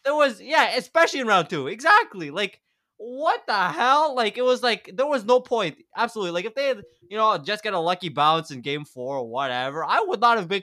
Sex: male